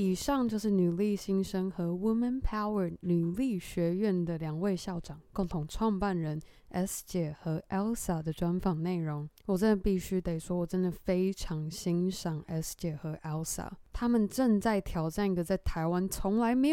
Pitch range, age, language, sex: 175-210 Hz, 20-39, Chinese, female